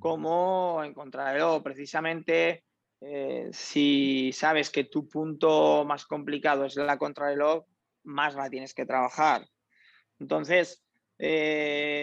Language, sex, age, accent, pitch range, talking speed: Portuguese, male, 20-39, Spanish, 145-175 Hz, 105 wpm